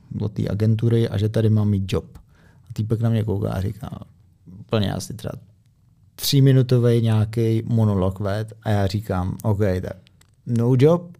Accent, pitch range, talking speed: native, 110-130 Hz, 160 wpm